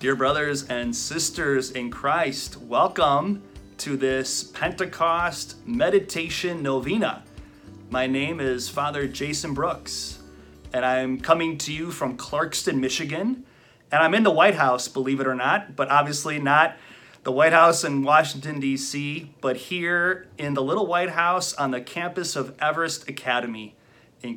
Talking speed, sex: 145 wpm, male